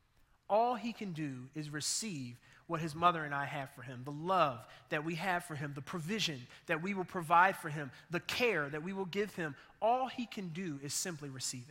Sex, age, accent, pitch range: male, 30-49, American, 145-195 Hz